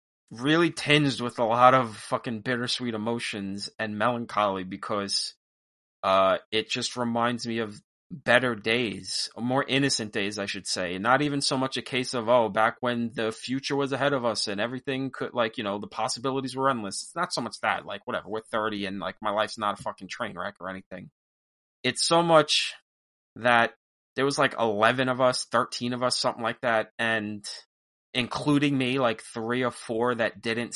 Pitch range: 105-125 Hz